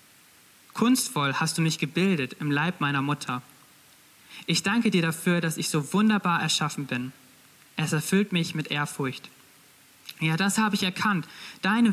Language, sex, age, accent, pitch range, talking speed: German, male, 20-39, German, 150-190 Hz, 150 wpm